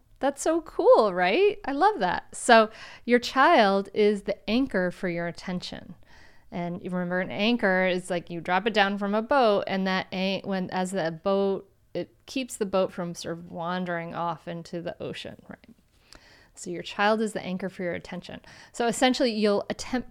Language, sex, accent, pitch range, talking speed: English, female, American, 175-235 Hz, 190 wpm